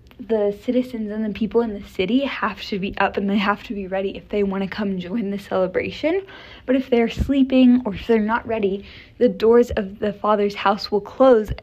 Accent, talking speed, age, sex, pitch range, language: American, 220 wpm, 10-29, female, 200-245 Hz, English